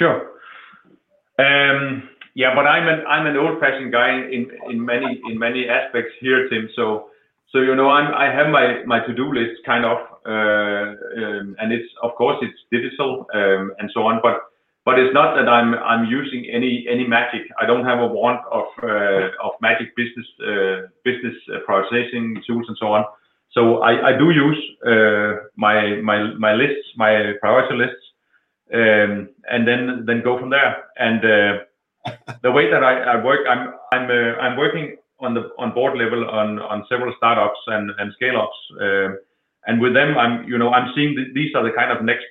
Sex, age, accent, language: male, 30-49, Danish, English